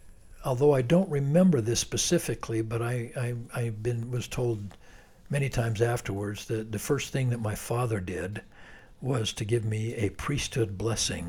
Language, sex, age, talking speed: English, male, 60-79, 165 wpm